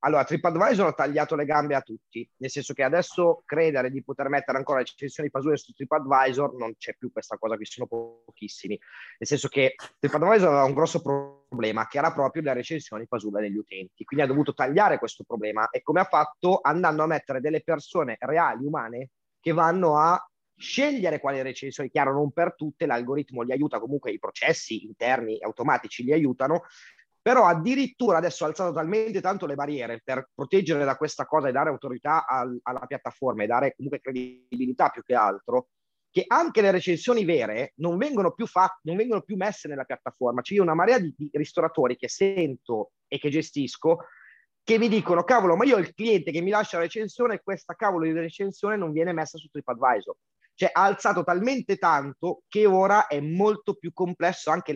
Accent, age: native, 30-49